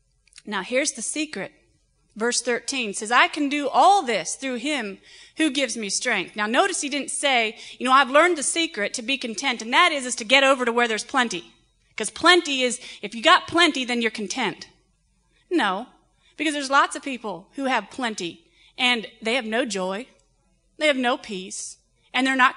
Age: 30-49